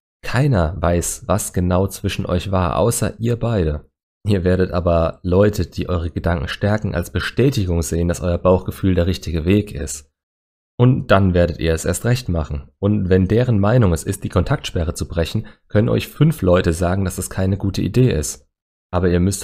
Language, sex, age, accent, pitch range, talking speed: German, male, 30-49, German, 85-100 Hz, 185 wpm